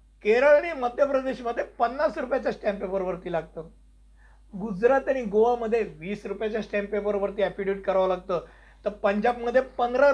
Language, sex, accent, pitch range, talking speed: Hindi, male, native, 200-250 Hz, 140 wpm